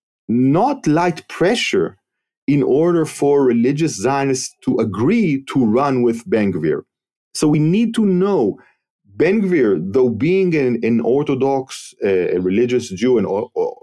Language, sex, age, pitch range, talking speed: English, male, 40-59, 110-165 Hz, 135 wpm